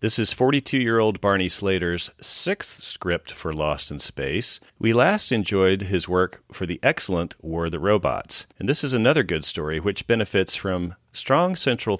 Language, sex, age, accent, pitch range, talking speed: English, male, 40-59, American, 80-105 Hz, 170 wpm